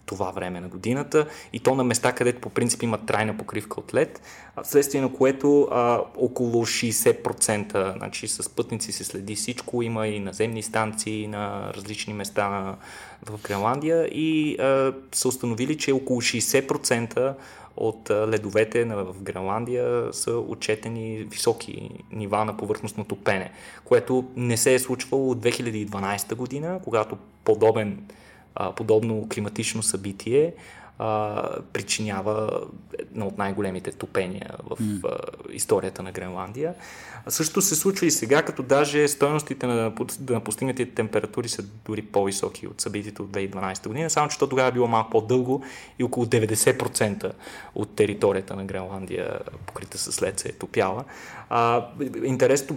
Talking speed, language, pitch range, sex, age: 135 wpm, Bulgarian, 105-130 Hz, male, 20-39